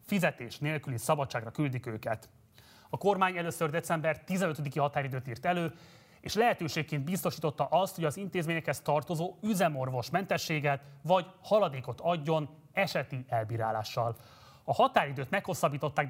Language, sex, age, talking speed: Hungarian, male, 30-49, 115 wpm